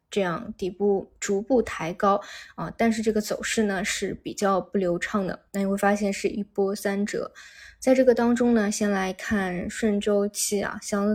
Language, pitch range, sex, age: Chinese, 195-225 Hz, female, 20-39